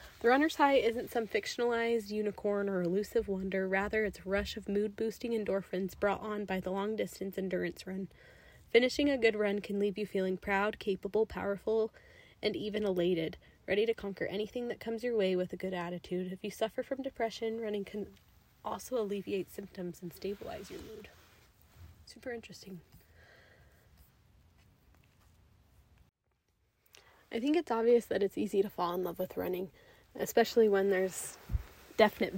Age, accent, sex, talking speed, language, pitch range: 20-39, American, female, 155 wpm, English, 185-220 Hz